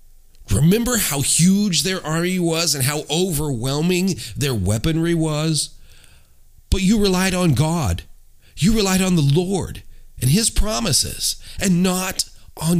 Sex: male